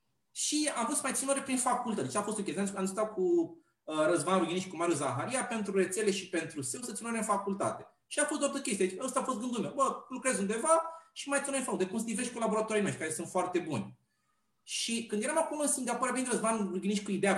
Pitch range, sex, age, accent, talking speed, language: 195-270 Hz, male, 30-49, native, 230 wpm, Romanian